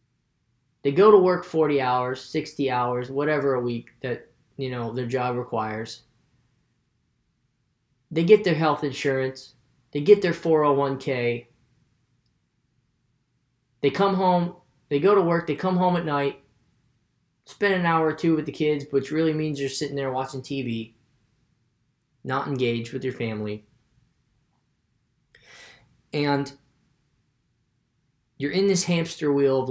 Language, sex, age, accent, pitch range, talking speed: English, male, 10-29, American, 120-150 Hz, 135 wpm